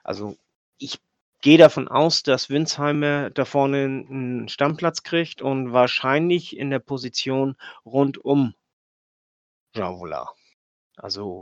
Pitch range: 105-140 Hz